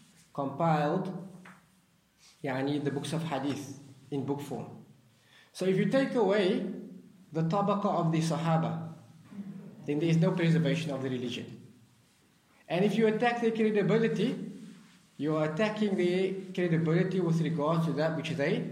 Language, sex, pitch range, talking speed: English, male, 155-190 Hz, 130 wpm